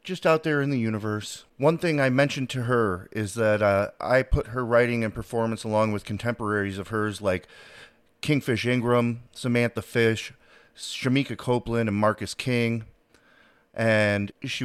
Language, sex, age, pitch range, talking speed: English, male, 30-49, 105-135 Hz, 155 wpm